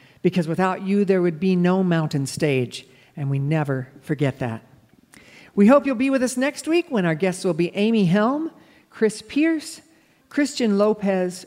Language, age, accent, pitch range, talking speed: English, 50-69, American, 140-205 Hz, 175 wpm